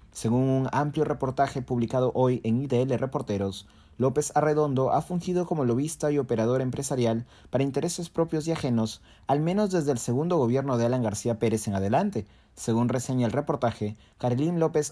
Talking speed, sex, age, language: 165 wpm, male, 30-49, Spanish